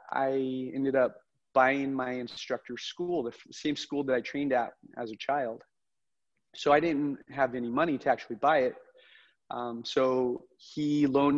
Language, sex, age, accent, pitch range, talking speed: English, male, 30-49, American, 125-145 Hz, 170 wpm